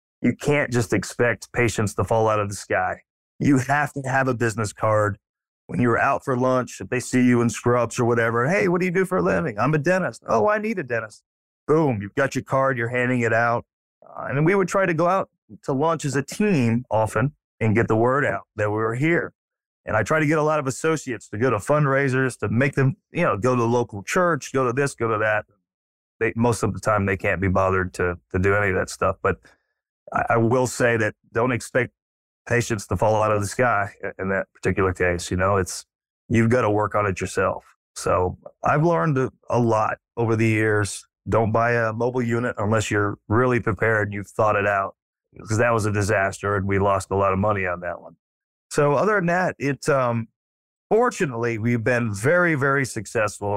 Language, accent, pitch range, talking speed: English, American, 105-135 Hz, 225 wpm